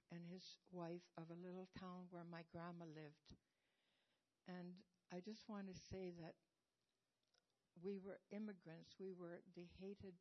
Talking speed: 145 wpm